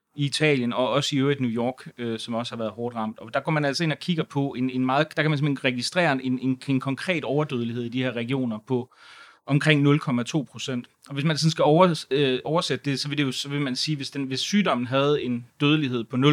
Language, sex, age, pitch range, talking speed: Danish, male, 30-49, 120-145 Hz, 245 wpm